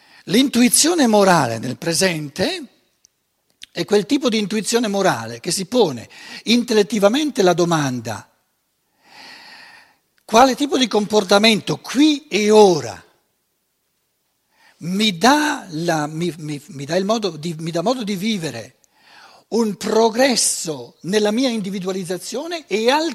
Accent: native